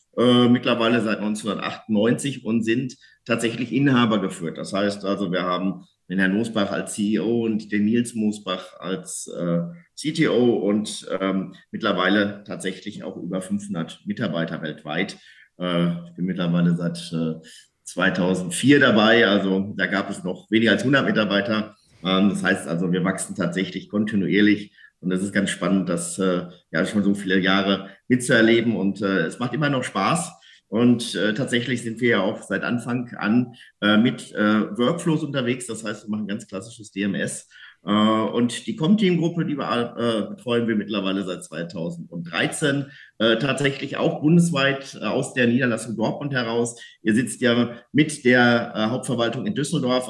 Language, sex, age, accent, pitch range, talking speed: German, male, 50-69, German, 95-120 Hz, 160 wpm